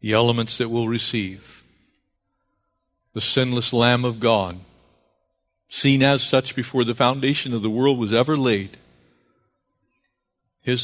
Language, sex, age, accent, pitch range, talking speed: English, male, 50-69, American, 95-120 Hz, 125 wpm